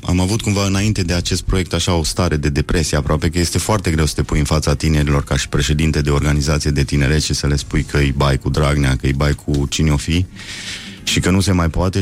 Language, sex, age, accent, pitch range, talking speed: Romanian, male, 30-49, native, 75-95 Hz, 260 wpm